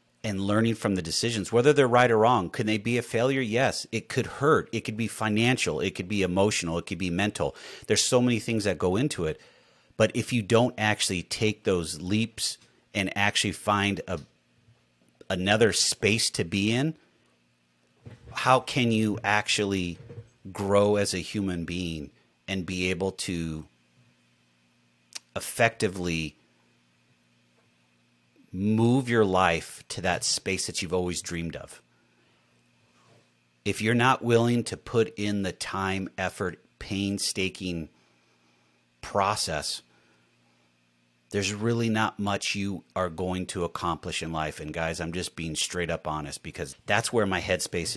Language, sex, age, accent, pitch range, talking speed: English, male, 40-59, American, 75-110 Hz, 145 wpm